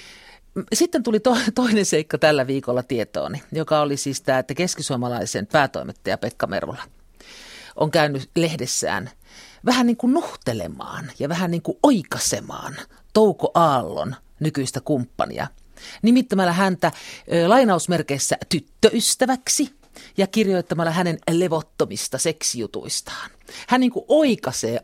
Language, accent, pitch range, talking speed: Finnish, native, 150-220 Hz, 110 wpm